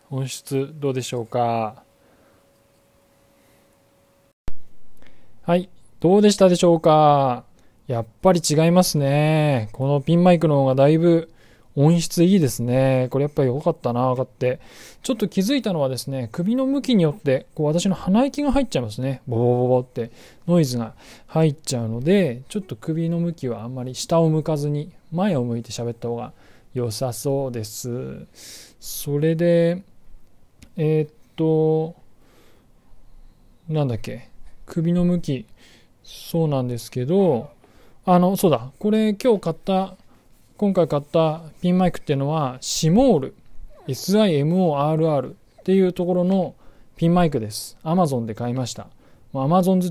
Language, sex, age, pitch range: Japanese, male, 20-39, 125-175 Hz